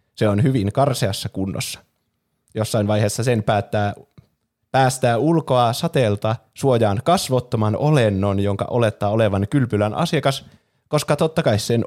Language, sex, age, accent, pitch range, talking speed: Finnish, male, 20-39, native, 105-130 Hz, 120 wpm